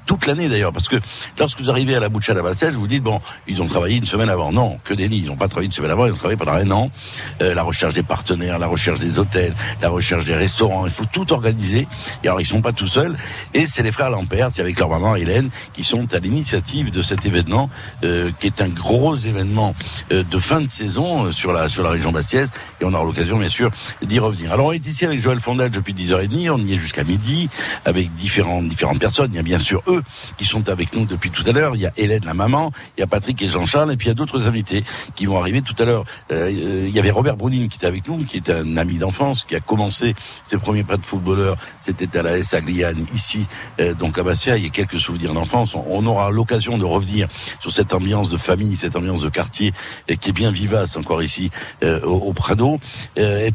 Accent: French